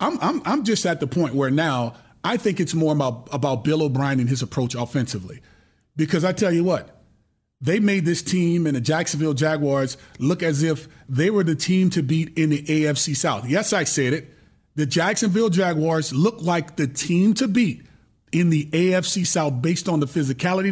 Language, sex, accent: English, male, American